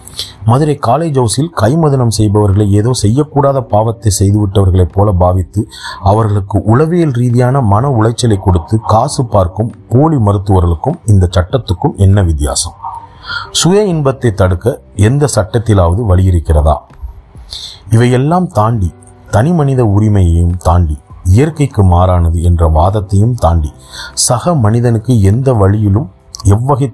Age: 40-59